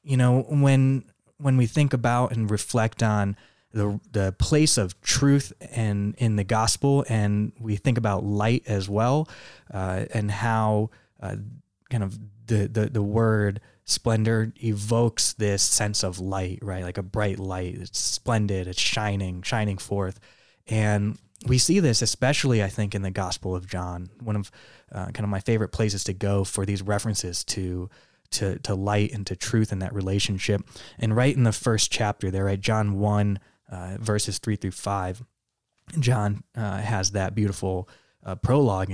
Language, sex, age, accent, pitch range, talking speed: English, male, 20-39, American, 100-115 Hz, 170 wpm